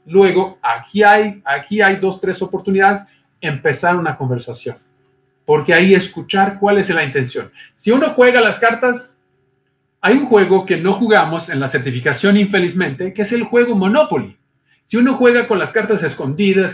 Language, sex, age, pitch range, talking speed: Spanish, male, 40-59, 145-205 Hz, 160 wpm